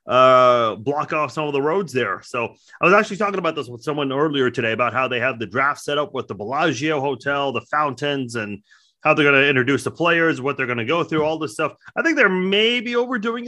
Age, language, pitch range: 30-49, English, 125-165 Hz